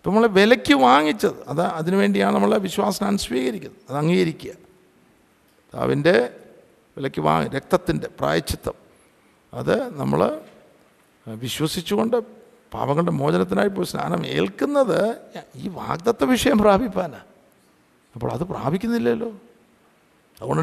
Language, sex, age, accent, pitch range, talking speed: Malayalam, male, 50-69, native, 160-235 Hz, 95 wpm